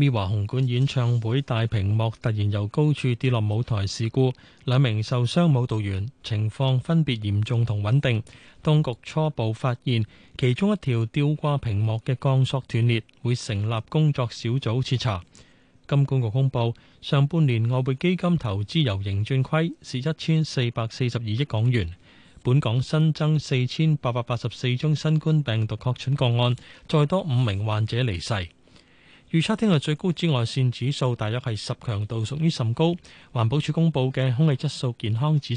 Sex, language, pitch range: male, Chinese, 115-150 Hz